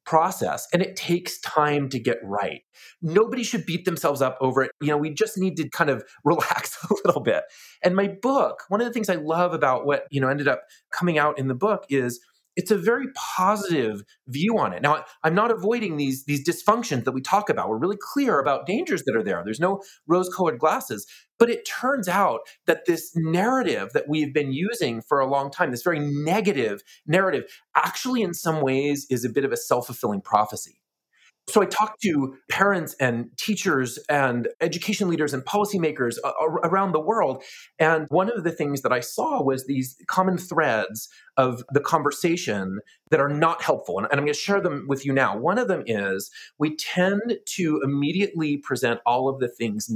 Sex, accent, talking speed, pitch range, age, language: male, American, 195 wpm, 135-190 Hz, 30-49, English